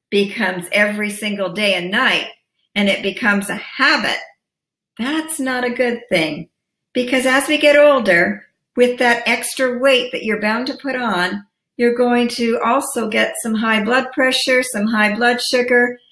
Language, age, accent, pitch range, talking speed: English, 50-69, American, 210-275 Hz, 165 wpm